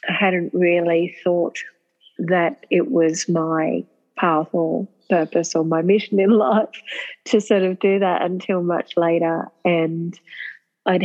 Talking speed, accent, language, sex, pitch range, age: 140 wpm, Australian, English, female, 165-195 Hz, 40-59